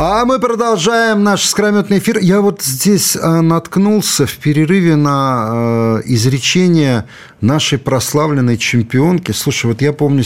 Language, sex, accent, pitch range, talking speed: Russian, male, native, 110-160 Hz, 125 wpm